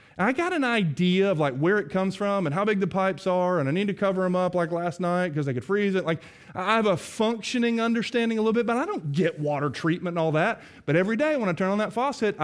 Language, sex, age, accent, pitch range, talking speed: English, male, 30-49, American, 130-195 Hz, 280 wpm